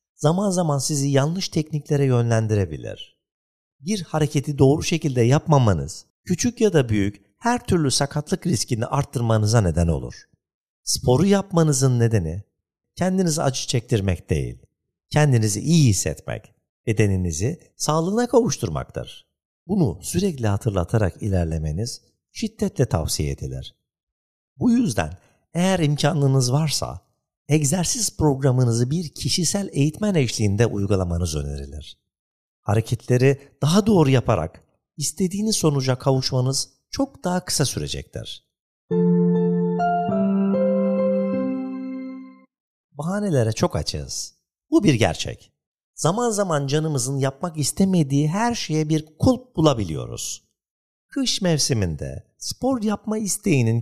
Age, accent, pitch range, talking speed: 50-69, native, 100-170 Hz, 95 wpm